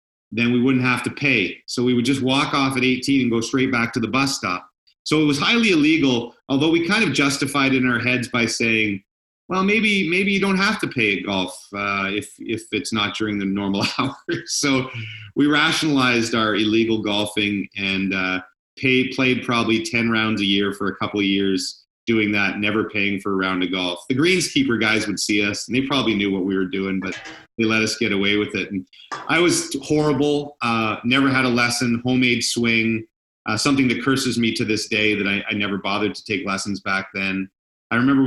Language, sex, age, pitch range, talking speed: English, male, 40-59, 100-130 Hz, 220 wpm